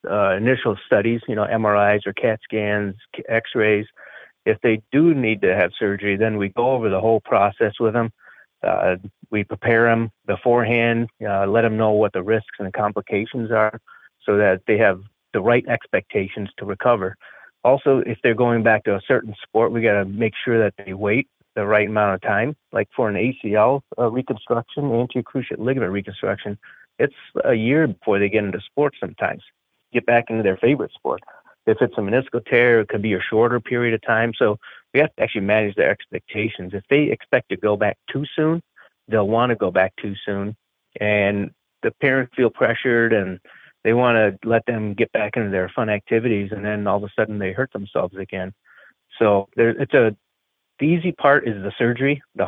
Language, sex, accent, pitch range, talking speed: English, male, American, 105-120 Hz, 195 wpm